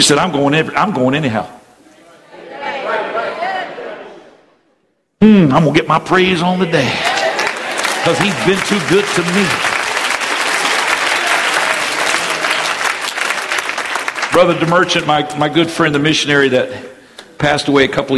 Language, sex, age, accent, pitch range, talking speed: English, male, 50-69, American, 125-165 Hz, 120 wpm